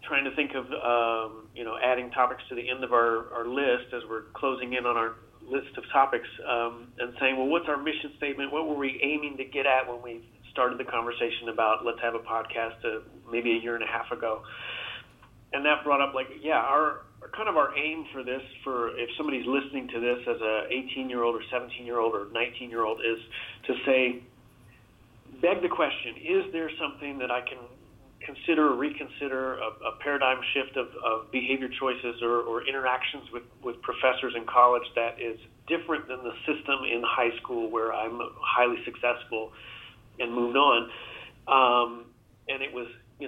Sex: male